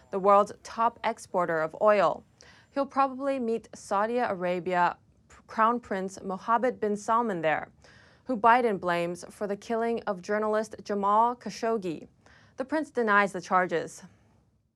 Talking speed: 130 wpm